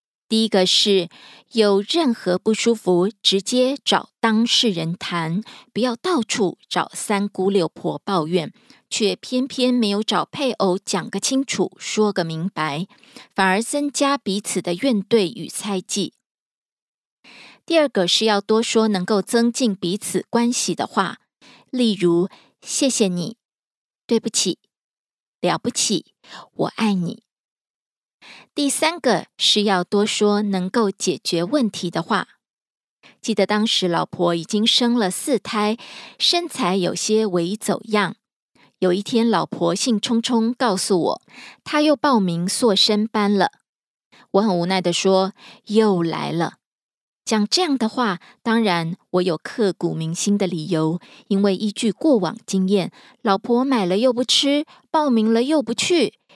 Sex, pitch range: female, 190-245 Hz